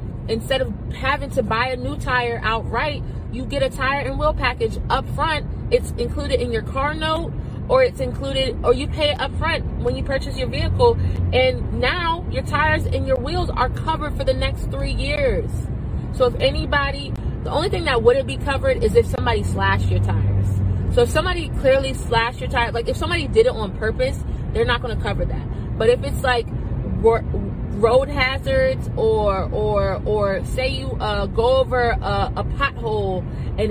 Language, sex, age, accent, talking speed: English, female, 30-49, American, 190 wpm